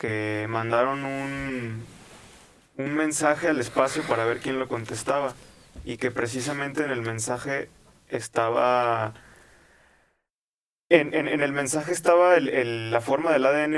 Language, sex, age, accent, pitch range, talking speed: Spanish, male, 20-39, Mexican, 115-135 Hz, 125 wpm